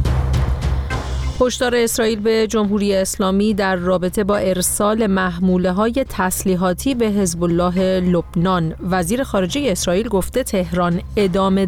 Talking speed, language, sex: 110 wpm, Persian, female